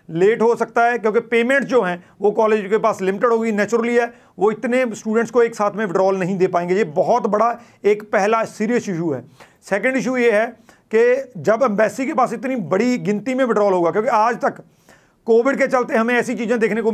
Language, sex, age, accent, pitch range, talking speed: Hindi, male, 40-59, native, 195-235 Hz, 215 wpm